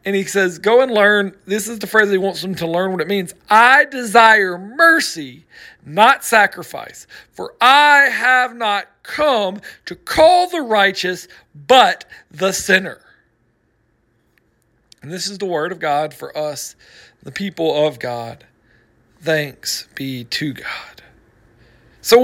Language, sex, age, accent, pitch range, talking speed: English, male, 40-59, American, 175-255 Hz, 145 wpm